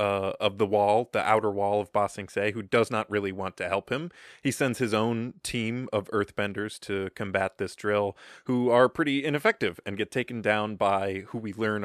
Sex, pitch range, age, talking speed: male, 100-120 Hz, 20-39, 210 wpm